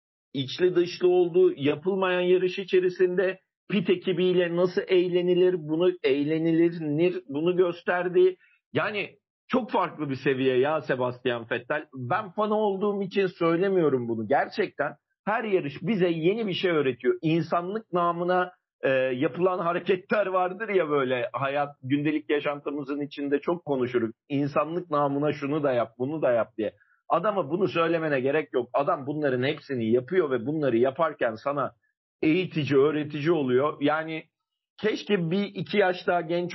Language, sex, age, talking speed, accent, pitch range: Turkish, male, 50-69, 135 wpm, native, 145-180 Hz